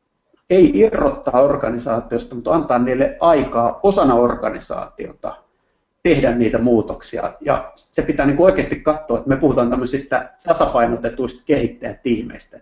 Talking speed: 115 wpm